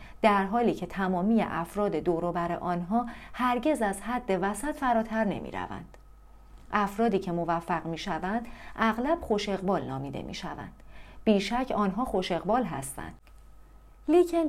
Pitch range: 180-245 Hz